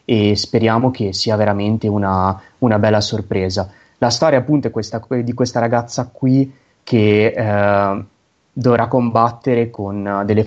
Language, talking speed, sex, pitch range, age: Italian, 140 wpm, male, 100-115 Hz, 20-39